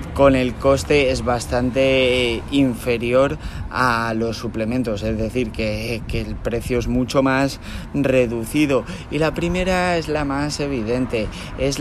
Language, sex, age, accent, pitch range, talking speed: Spanish, male, 30-49, Spanish, 110-130 Hz, 135 wpm